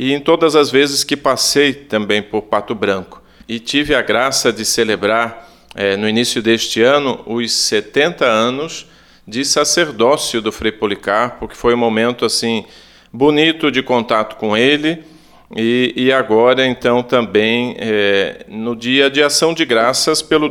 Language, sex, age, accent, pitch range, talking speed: Portuguese, male, 40-59, Brazilian, 110-145 Hz, 155 wpm